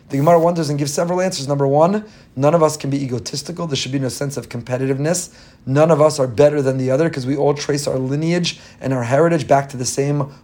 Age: 30-49